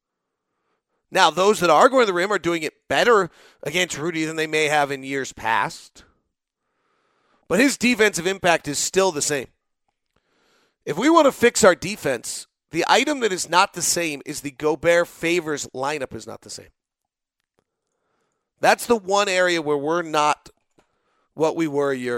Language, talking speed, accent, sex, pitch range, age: English, 160 wpm, American, male, 150-215 Hz, 40-59